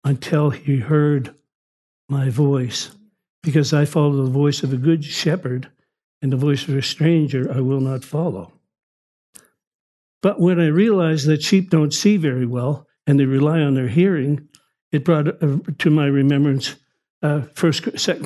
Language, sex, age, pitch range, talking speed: English, male, 60-79, 140-170 Hz, 155 wpm